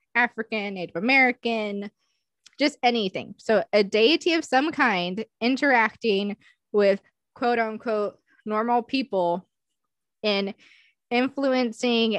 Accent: American